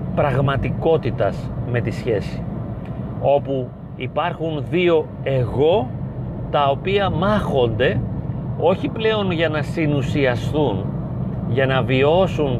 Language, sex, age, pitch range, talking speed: Greek, male, 40-59, 130-160 Hz, 90 wpm